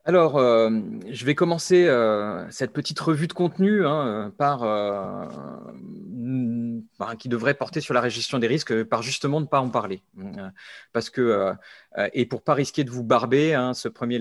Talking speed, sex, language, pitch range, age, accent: 165 wpm, male, French, 120-160 Hz, 30-49, French